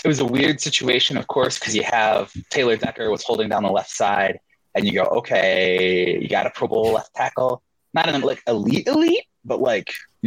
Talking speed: 215 wpm